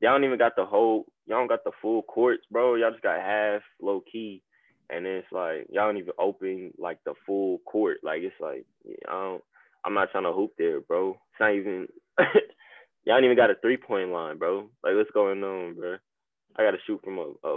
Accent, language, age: American, English, 10-29